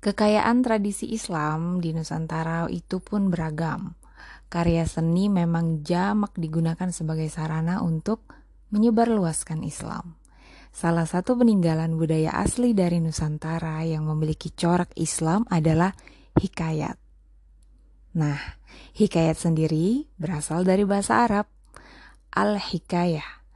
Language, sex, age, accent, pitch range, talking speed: Indonesian, female, 20-39, native, 155-185 Hz, 100 wpm